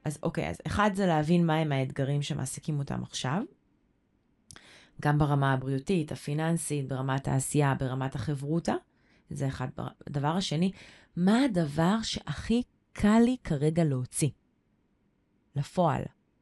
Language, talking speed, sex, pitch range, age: Hebrew, 115 wpm, female, 145-185 Hz, 20-39